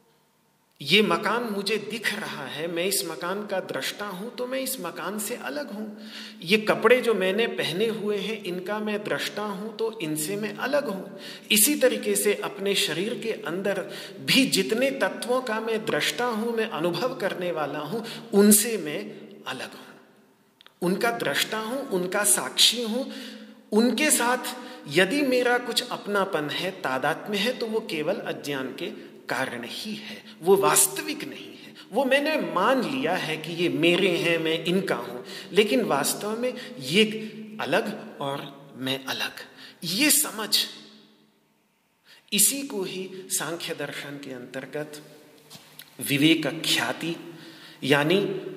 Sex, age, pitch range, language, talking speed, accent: male, 40-59, 175-235 Hz, Hindi, 145 wpm, native